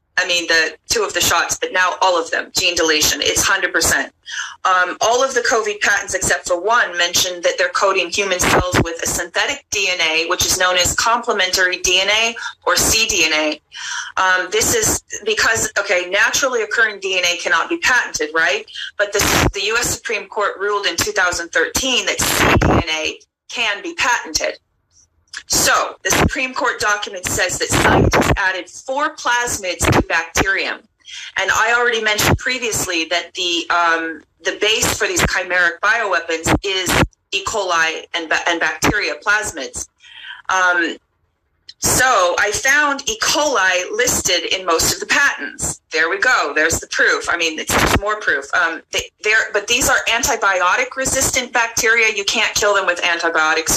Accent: American